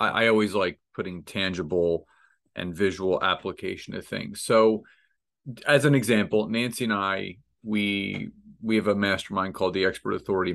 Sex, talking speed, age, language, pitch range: male, 150 wpm, 30-49, English, 95-115 Hz